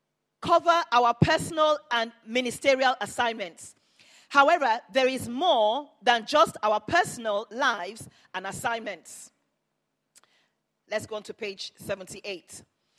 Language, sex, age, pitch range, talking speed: English, female, 40-59, 230-305 Hz, 105 wpm